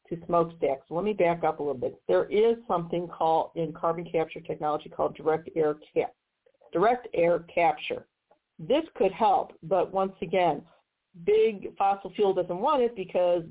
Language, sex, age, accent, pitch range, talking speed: English, female, 40-59, American, 165-205 Hz, 165 wpm